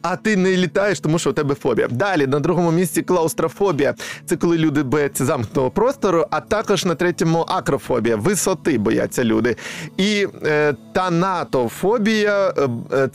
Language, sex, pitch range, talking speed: Ukrainian, male, 130-185 Hz, 150 wpm